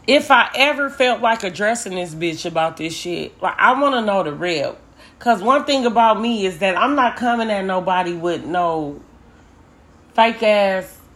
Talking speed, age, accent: 185 wpm, 30-49, American